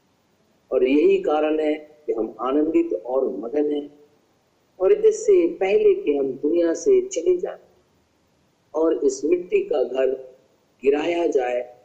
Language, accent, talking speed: Hindi, native, 130 wpm